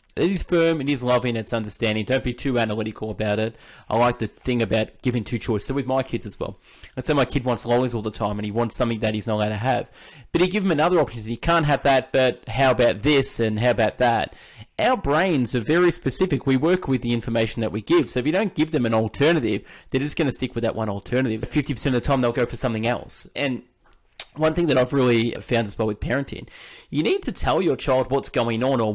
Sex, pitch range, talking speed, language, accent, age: male, 115-140 Hz, 260 wpm, English, Australian, 20-39